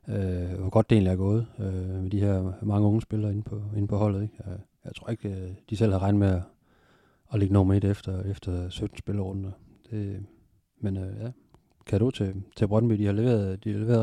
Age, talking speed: 30-49, 225 wpm